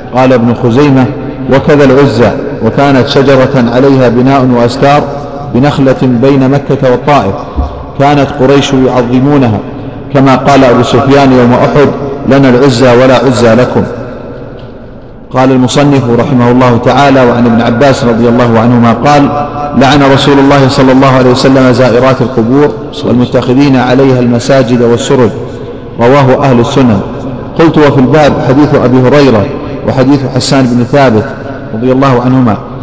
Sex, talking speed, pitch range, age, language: male, 125 wpm, 125-140 Hz, 50-69, Arabic